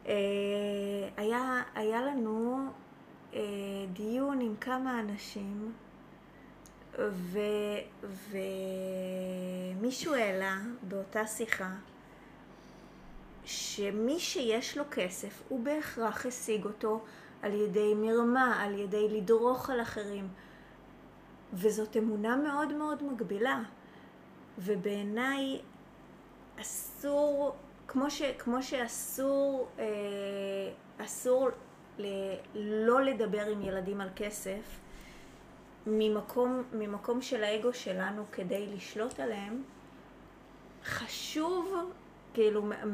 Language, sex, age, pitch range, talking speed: Hebrew, female, 20-39, 200-255 Hz, 80 wpm